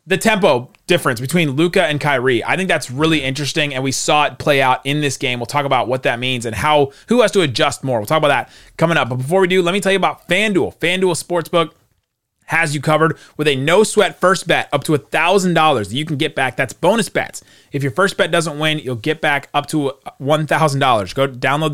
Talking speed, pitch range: 230 wpm, 120-170 Hz